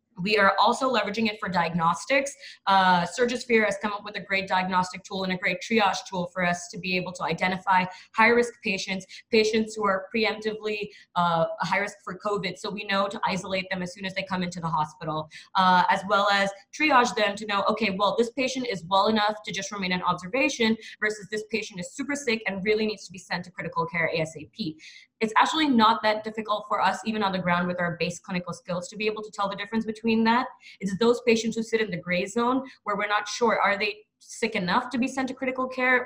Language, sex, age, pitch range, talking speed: English, female, 20-39, 185-220 Hz, 230 wpm